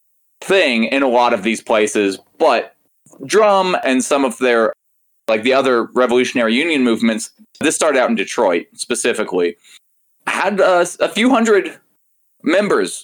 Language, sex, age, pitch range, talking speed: English, male, 20-39, 115-195 Hz, 145 wpm